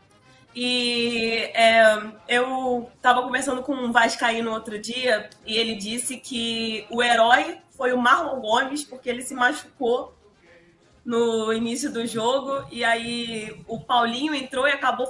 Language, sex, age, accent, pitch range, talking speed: Portuguese, female, 20-39, Brazilian, 220-265 Hz, 140 wpm